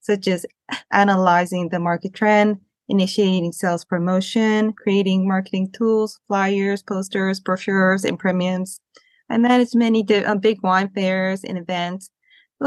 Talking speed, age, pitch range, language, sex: 135 wpm, 20-39, 185-220 Hz, English, female